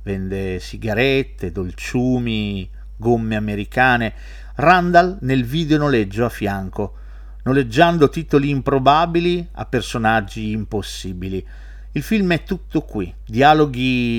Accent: native